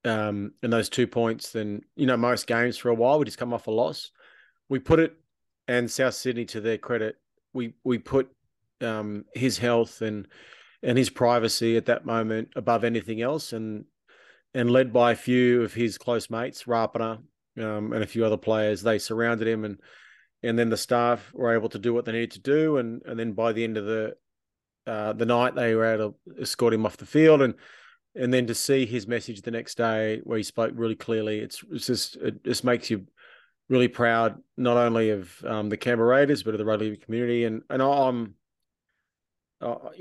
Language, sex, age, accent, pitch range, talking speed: English, male, 30-49, Australian, 110-120 Hz, 205 wpm